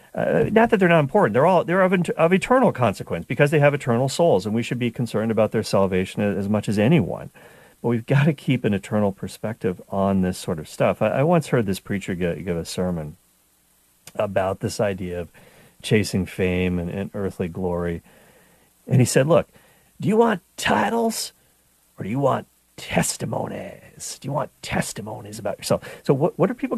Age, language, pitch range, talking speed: 40-59, English, 105-175 Hz, 195 wpm